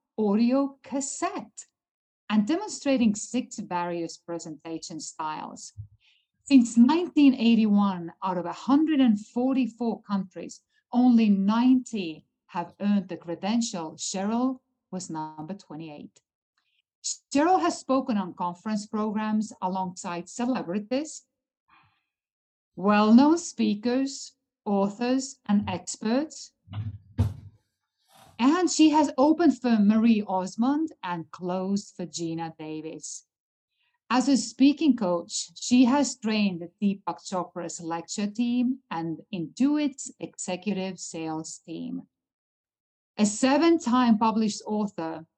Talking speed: 95 wpm